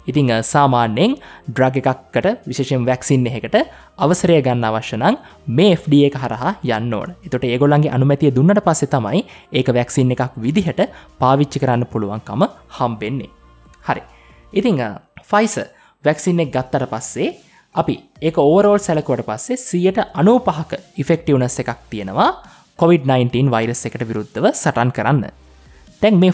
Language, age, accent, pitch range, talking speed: English, 20-39, Indian, 125-180 Hz, 125 wpm